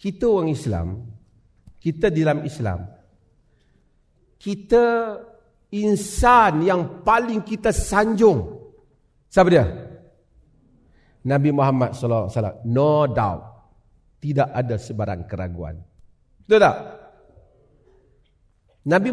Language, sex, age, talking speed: Malay, male, 40-59, 90 wpm